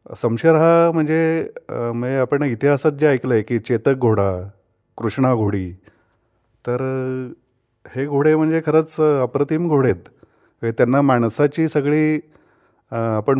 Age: 30-49